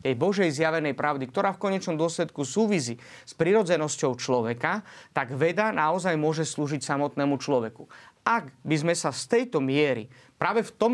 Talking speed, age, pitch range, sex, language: 160 wpm, 30-49, 145-190 Hz, male, Slovak